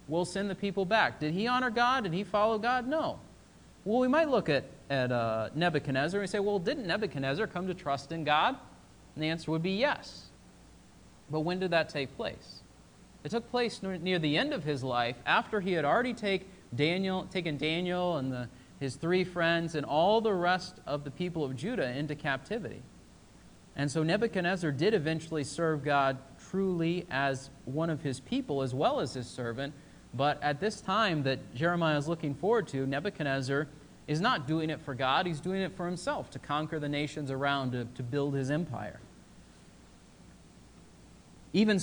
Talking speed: 185 wpm